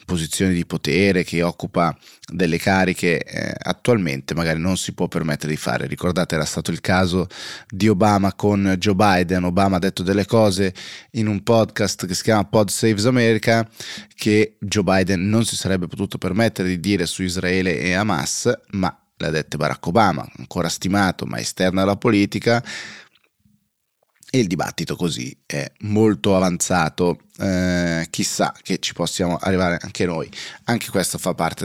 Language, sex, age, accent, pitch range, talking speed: Italian, male, 20-39, native, 90-115 Hz, 160 wpm